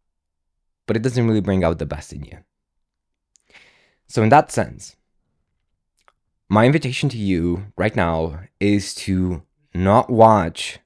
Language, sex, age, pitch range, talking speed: English, male, 20-39, 85-115 Hz, 135 wpm